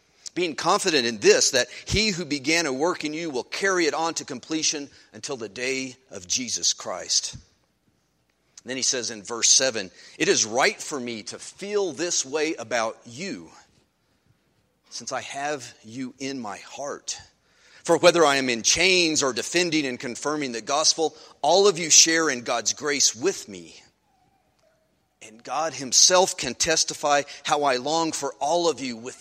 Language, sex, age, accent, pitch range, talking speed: English, male, 40-59, American, 105-165 Hz, 170 wpm